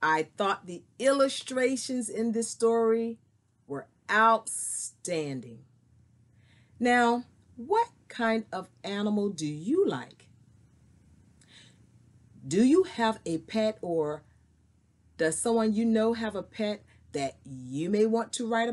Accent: American